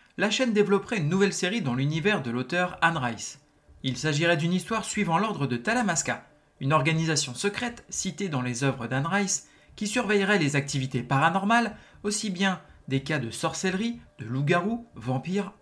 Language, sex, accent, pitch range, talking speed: French, male, French, 140-205 Hz, 165 wpm